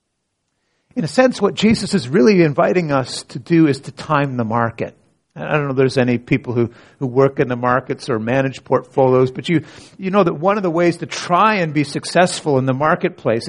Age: 50-69